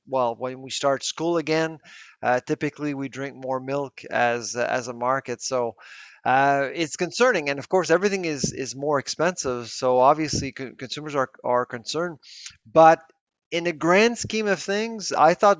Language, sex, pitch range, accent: English, male, 130-160 Hz, American